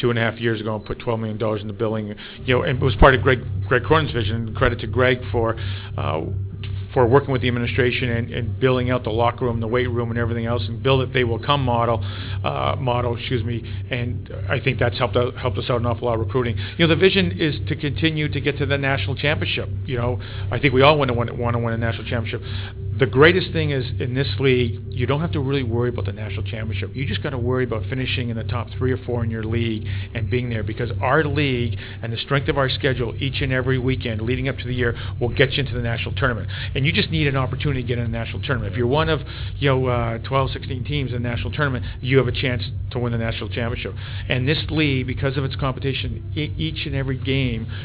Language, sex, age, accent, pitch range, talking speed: English, male, 40-59, American, 110-130 Hz, 255 wpm